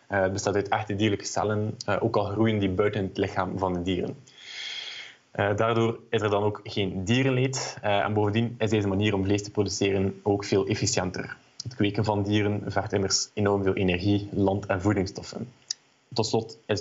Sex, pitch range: male, 100-110 Hz